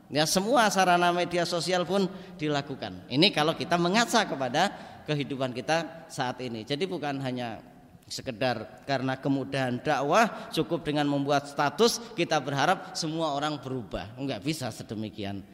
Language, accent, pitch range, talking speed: Indonesian, native, 135-180 Hz, 135 wpm